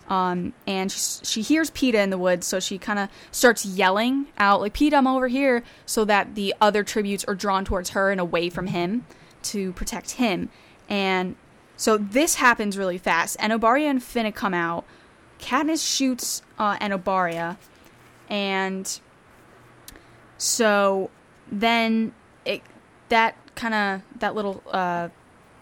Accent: American